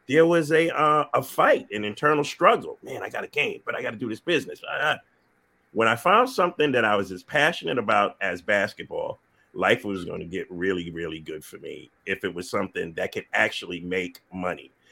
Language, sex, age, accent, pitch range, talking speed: English, male, 30-49, American, 110-160 Hz, 215 wpm